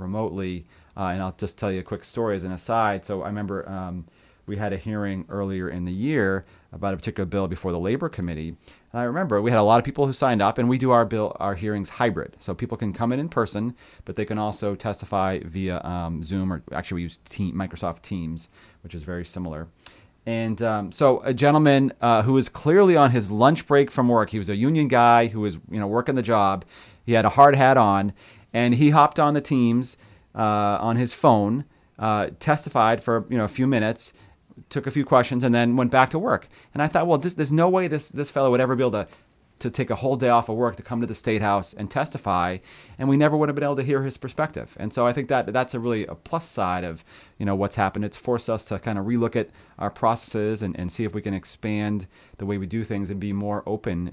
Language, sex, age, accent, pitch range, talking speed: English, male, 30-49, American, 95-125 Hz, 250 wpm